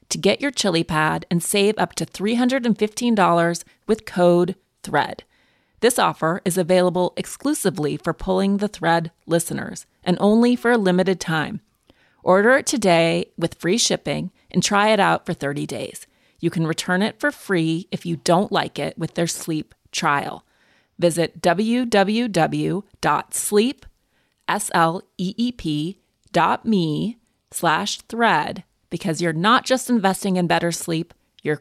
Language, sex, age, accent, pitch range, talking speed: English, female, 30-49, American, 165-205 Hz, 125 wpm